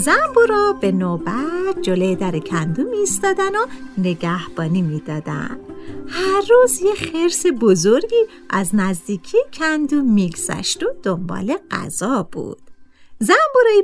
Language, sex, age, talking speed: Persian, female, 50-69, 105 wpm